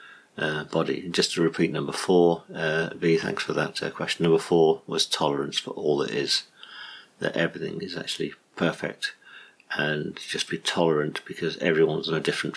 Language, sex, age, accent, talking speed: English, male, 50-69, British, 170 wpm